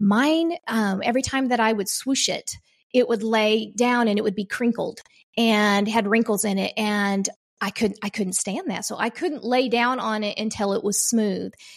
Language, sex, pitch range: English, female, 205-245 Hz